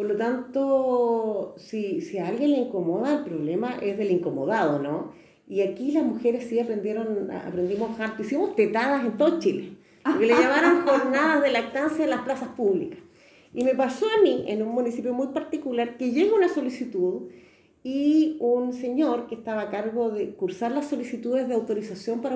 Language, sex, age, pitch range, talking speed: Spanish, female, 40-59, 195-265 Hz, 175 wpm